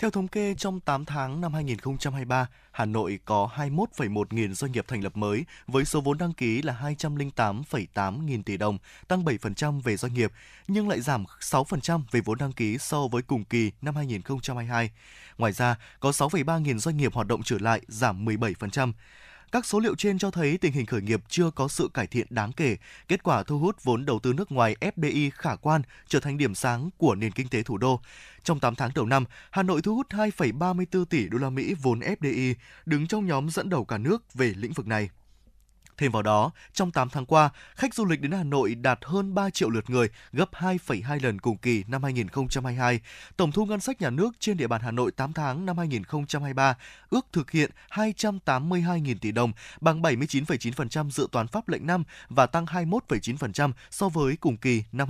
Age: 20-39